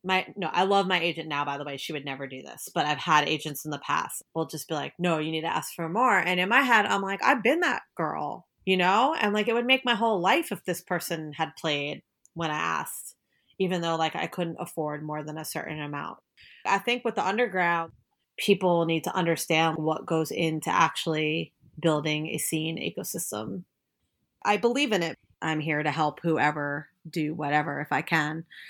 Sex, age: female, 30-49